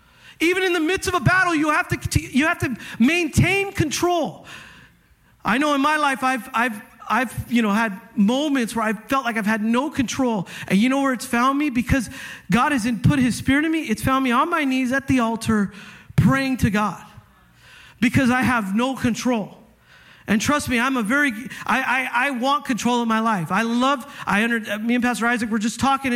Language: English